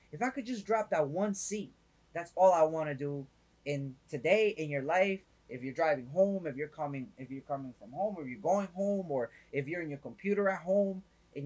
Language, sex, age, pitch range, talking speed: English, male, 20-39, 140-195 Hz, 230 wpm